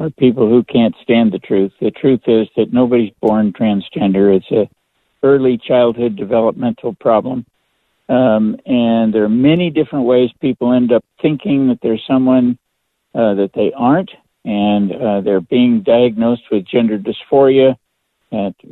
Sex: male